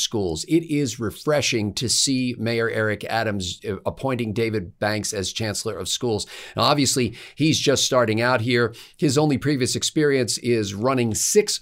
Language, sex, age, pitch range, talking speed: English, male, 50-69, 110-130 Hz, 150 wpm